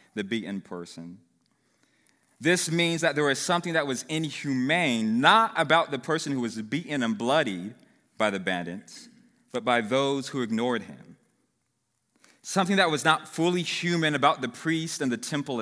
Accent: American